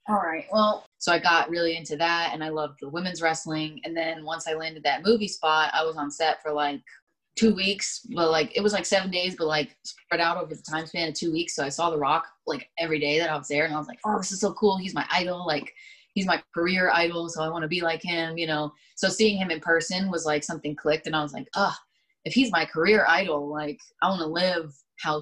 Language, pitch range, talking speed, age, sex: English, 155-185 Hz, 265 wpm, 20-39, female